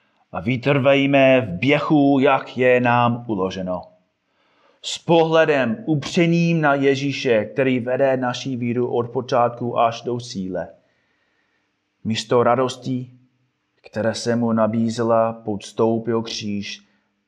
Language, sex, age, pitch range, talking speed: Czech, male, 30-49, 100-125 Hz, 110 wpm